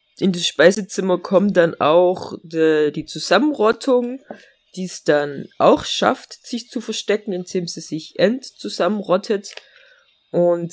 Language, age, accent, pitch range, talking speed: German, 20-39, German, 165-210 Hz, 125 wpm